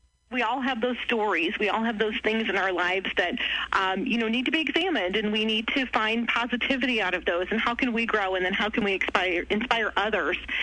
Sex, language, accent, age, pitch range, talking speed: female, English, American, 30-49, 195-260 Hz, 235 wpm